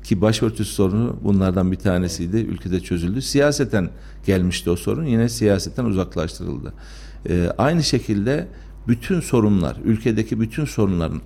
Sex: male